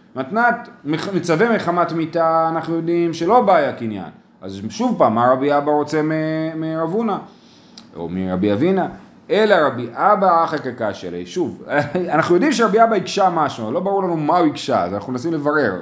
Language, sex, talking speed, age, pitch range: Hebrew, male, 165 wpm, 30-49, 135-200 Hz